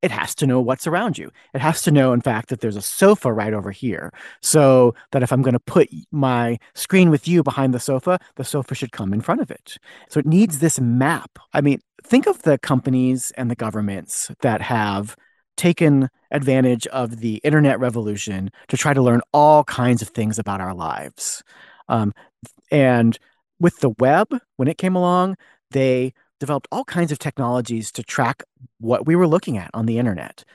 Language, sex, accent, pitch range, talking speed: English, male, American, 120-165 Hz, 195 wpm